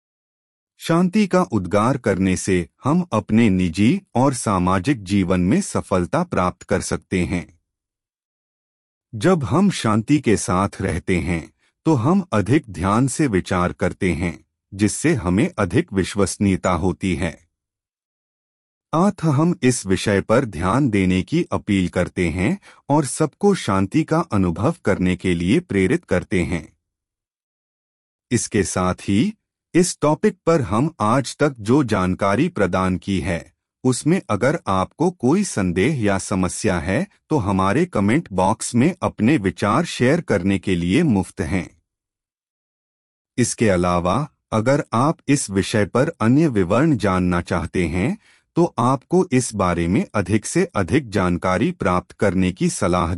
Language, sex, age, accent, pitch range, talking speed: Hindi, male, 30-49, native, 90-140 Hz, 135 wpm